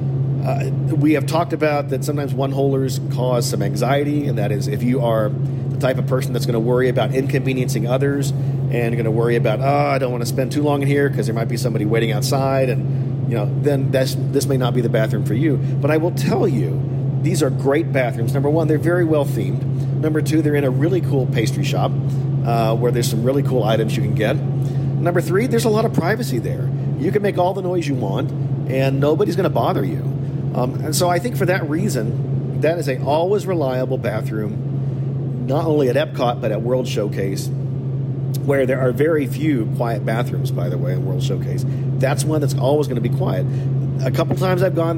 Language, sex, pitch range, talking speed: English, male, 130-140 Hz, 225 wpm